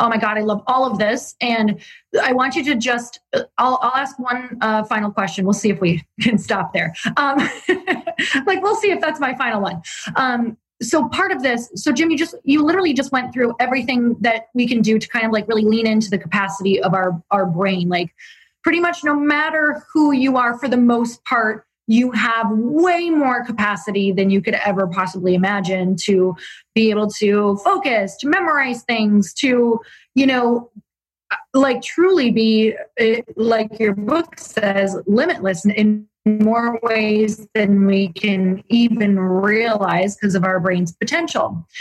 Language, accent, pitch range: English, American, 210-260 Hz